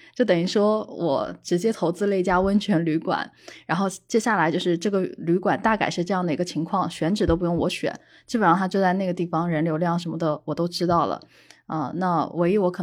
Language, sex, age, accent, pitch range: Chinese, female, 20-39, native, 160-210 Hz